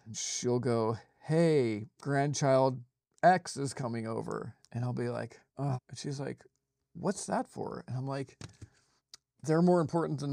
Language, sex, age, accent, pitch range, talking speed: English, male, 40-59, American, 120-150 Hz, 155 wpm